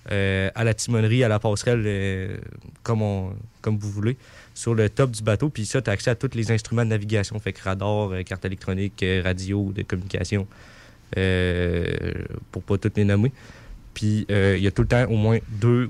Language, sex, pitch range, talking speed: French, male, 105-115 Hz, 210 wpm